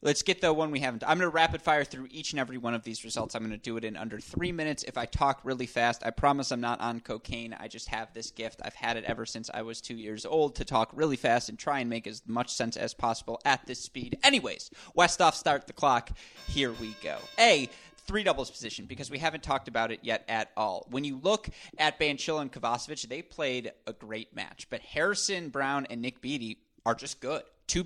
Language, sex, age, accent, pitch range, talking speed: English, male, 20-39, American, 115-150 Hz, 245 wpm